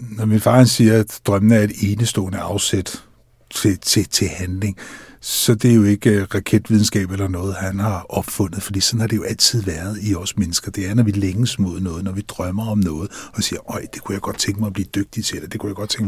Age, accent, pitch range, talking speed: 60-79, native, 100-115 Hz, 245 wpm